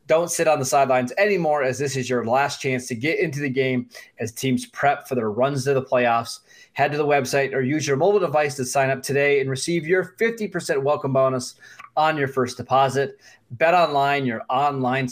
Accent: American